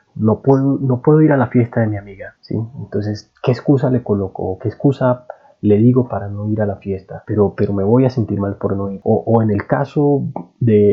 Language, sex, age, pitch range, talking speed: Spanish, male, 30-49, 105-135 Hz, 235 wpm